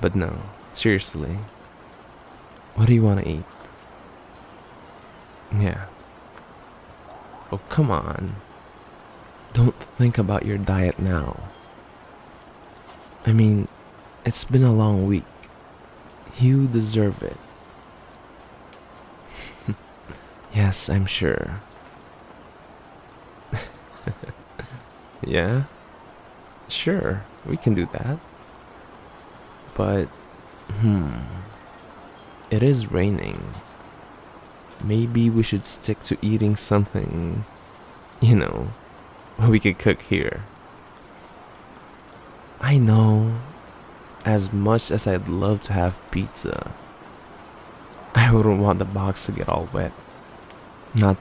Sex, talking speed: male, 90 wpm